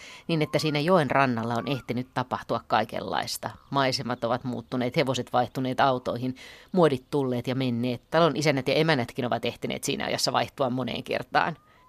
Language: Finnish